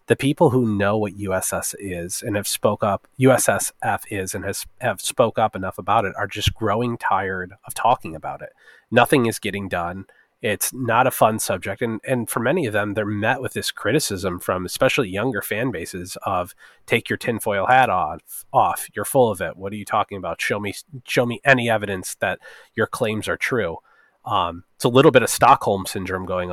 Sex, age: male, 30-49